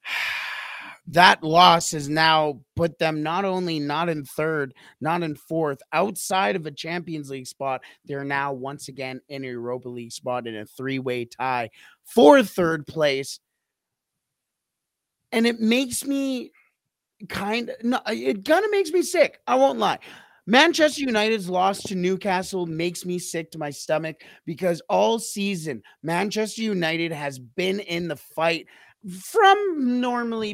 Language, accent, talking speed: English, American, 145 wpm